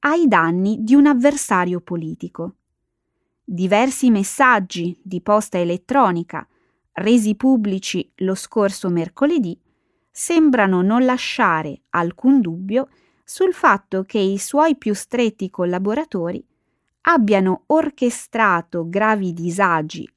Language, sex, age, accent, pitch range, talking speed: Italian, female, 20-39, native, 180-275 Hz, 100 wpm